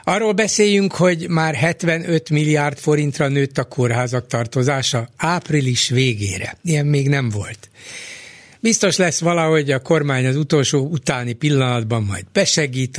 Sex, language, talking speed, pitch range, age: male, Hungarian, 130 wpm, 115-145 Hz, 60-79